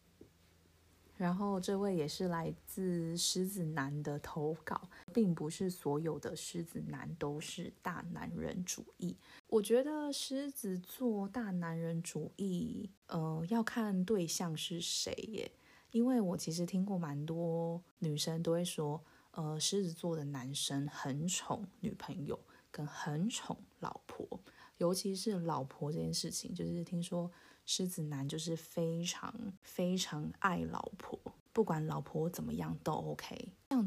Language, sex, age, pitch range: Chinese, female, 20-39, 155-195 Hz